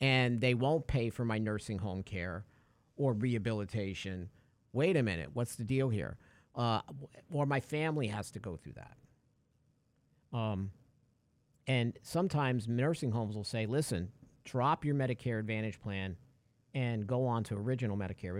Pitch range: 110-140 Hz